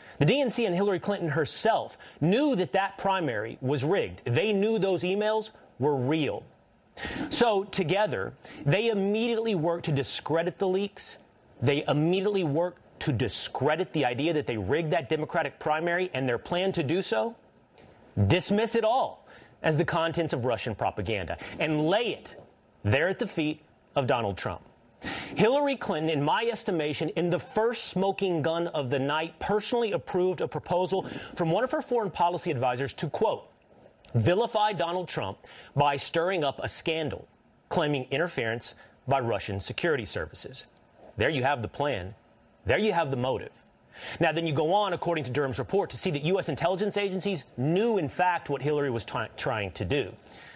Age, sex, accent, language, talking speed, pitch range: 30-49, male, American, English, 165 wpm, 145-195 Hz